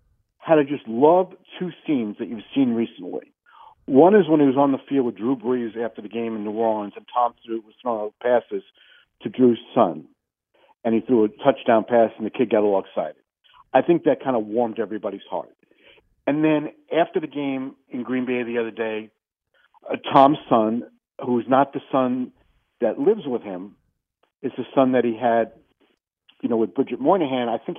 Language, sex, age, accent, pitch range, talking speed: English, male, 50-69, American, 115-130 Hz, 200 wpm